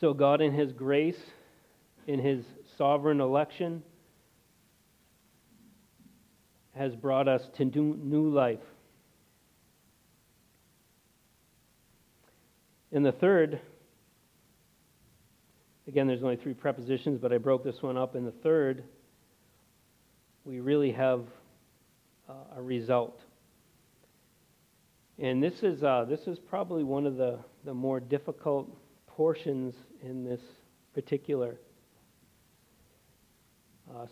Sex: male